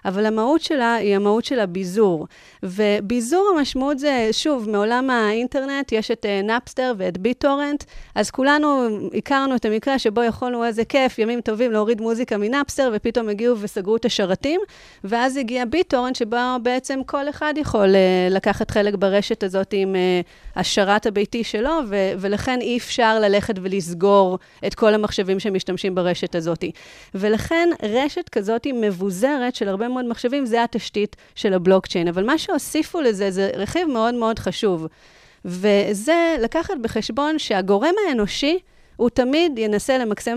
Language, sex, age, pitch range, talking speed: Hebrew, female, 30-49, 205-260 Hz, 145 wpm